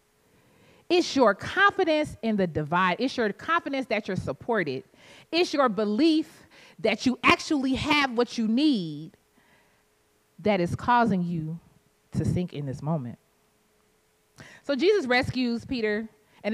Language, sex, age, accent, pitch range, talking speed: English, female, 30-49, American, 170-265 Hz, 130 wpm